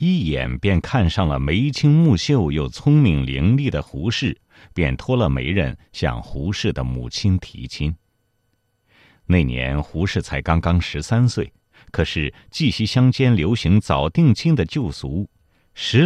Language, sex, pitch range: Chinese, male, 80-125 Hz